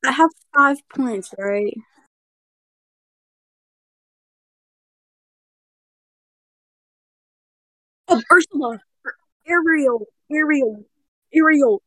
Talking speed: 50 wpm